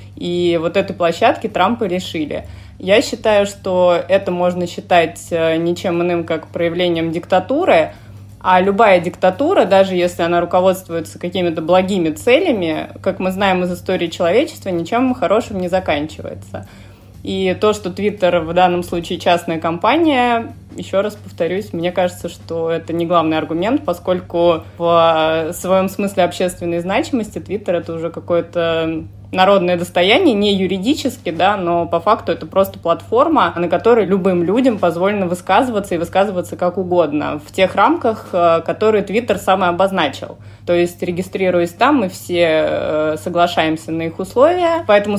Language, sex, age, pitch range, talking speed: Russian, female, 20-39, 165-195 Hz, 140 wpm